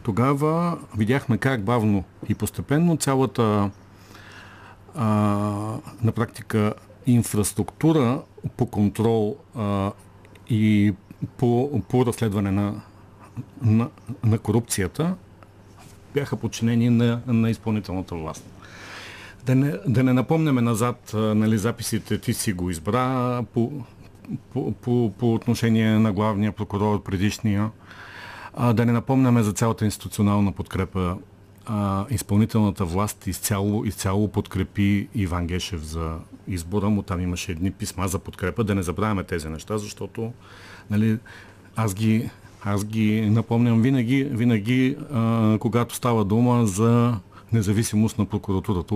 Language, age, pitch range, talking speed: Bulgarian, 50-69, 100-115 Hz, 120 wpm